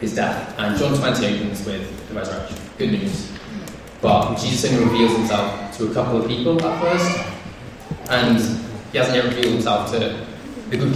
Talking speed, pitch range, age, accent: 175 wpm, 110-125 Hz, 20-39, British